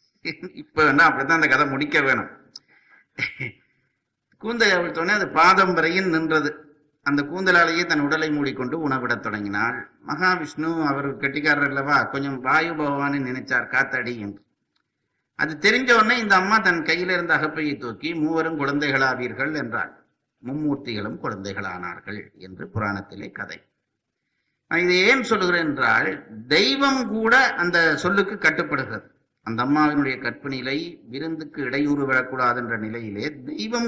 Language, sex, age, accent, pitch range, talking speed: Tamil, male, 50-69, native, 140-180 Hz, 110 wpm